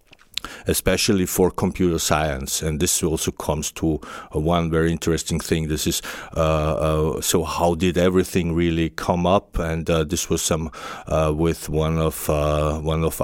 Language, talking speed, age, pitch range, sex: German, 165 wpm, 50-69, 80-90 Hz, male